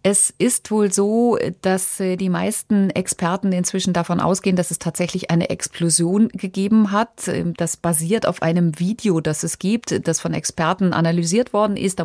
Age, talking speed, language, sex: 30-49, 165 wpm, German, female